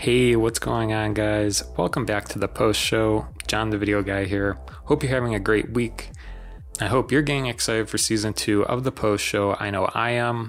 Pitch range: 100-120 Hz